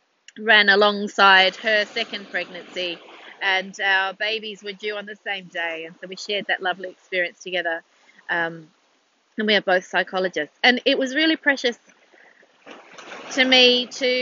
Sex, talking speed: female, 150 wpm